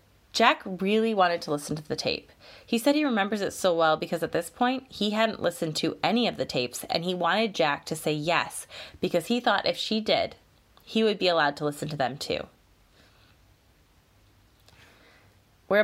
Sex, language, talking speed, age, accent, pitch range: female, English, 190 wpm, 20-39, American, 145-210 Hz